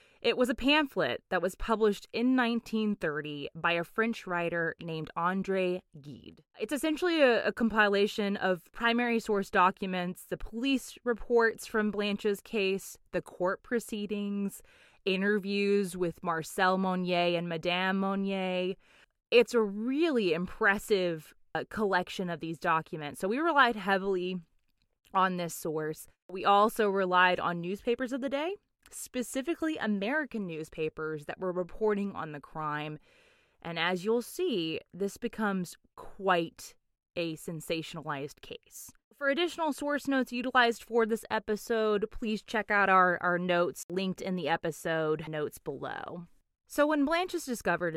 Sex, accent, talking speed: female, American, 135 wpm